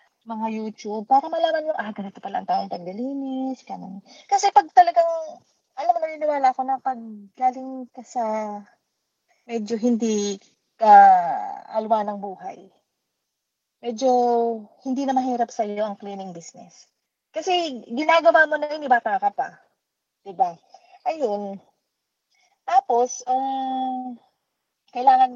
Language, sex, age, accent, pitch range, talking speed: Filipino, female, 20-39, native, 225-310 Hz, 120 wpm